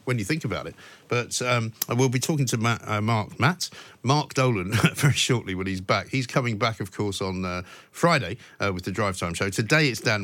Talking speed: 230 wpm